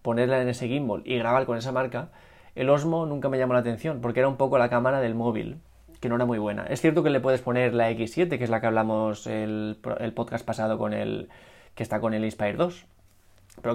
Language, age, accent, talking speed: Spanish, 20-39, Spanish, 240 wpm